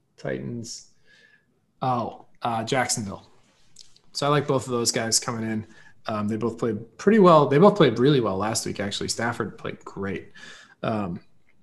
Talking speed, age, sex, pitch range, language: 160 wpm, 20-39, male, 125-155 Hz, English